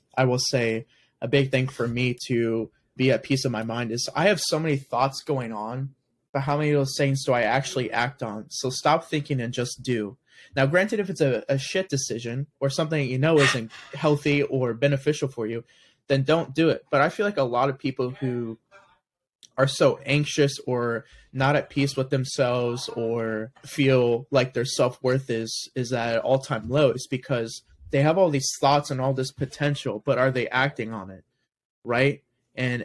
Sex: male